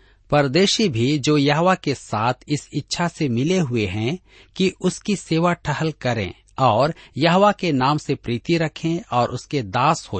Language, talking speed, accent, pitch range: Hindi, 165 wpm, native, 115-165 Hz